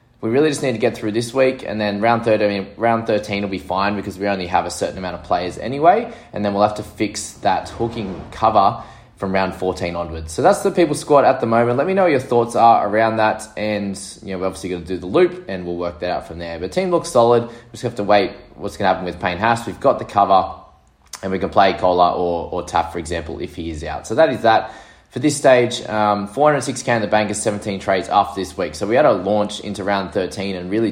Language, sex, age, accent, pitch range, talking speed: English, male, 20-39, Australian, 90-115 Hz, 265 wpm